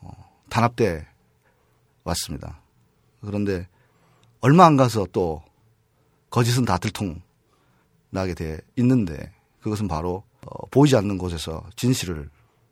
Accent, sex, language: native, male, Korean